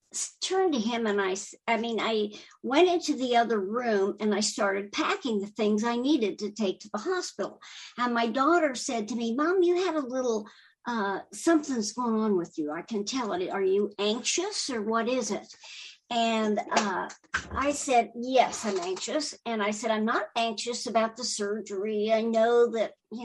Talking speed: 190 wpm